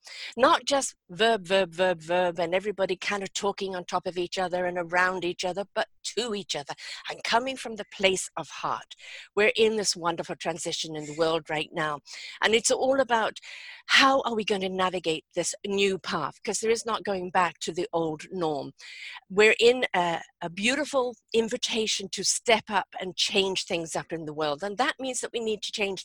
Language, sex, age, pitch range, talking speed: English, female, 50-69, 180-230 Hz, 205 wpm